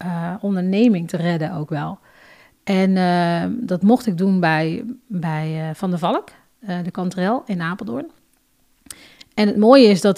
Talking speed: 165 wpm